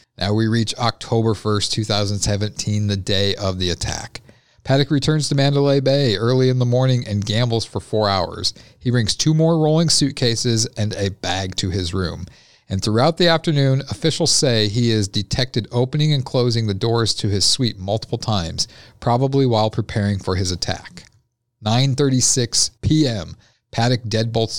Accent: American